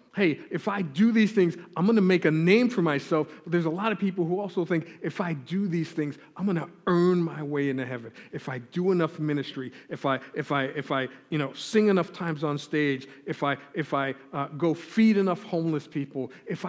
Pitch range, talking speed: 150-195 Hz, 235 wpm